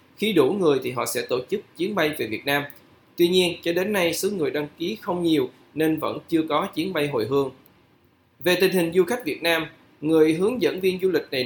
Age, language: 20-39, Vietnamese